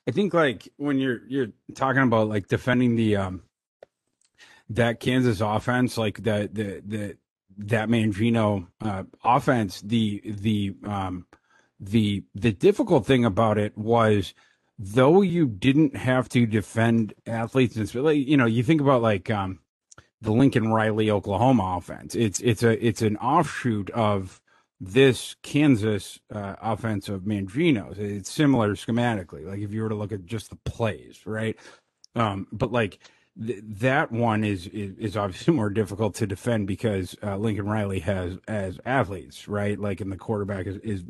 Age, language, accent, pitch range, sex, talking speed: 30-49, English, American, 100-120 Hz, male, 160 wpm